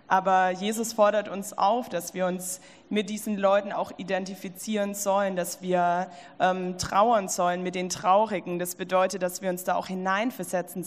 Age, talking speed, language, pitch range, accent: 20-39, 165 wpm, German, 185-210 Hz, German